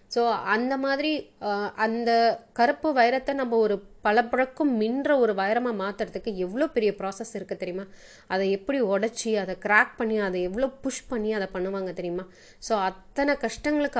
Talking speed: 150 wpm